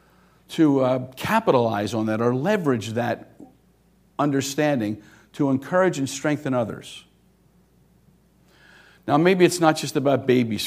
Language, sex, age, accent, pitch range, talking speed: English, male, 50-69, American, 115-150 Hz, 120 wpm